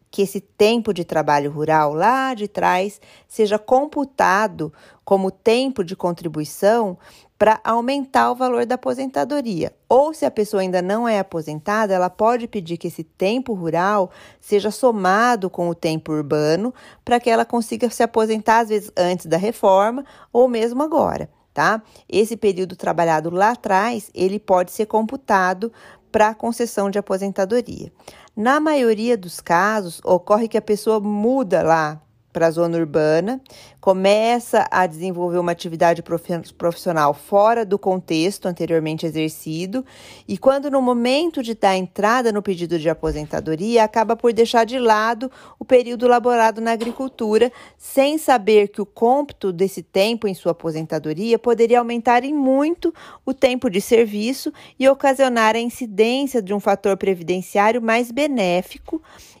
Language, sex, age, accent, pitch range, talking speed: Portuguese, female, 40-59, Brazilian, 180-240 Hz, 145 wpm